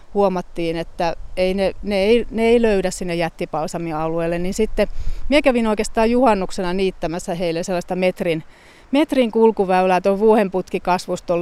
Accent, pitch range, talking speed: native, 170-215 Hz, 140 wpm